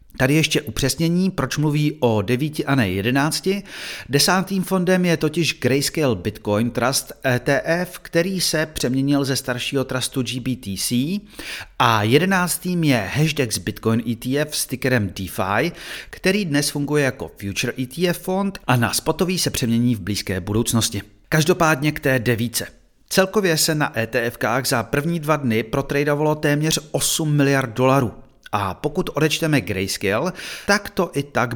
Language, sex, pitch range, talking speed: Czech, male, 115-155 Hz, 140 wpm